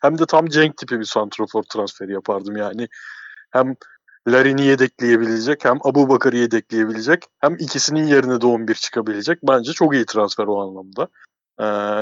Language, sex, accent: Turkish, male, native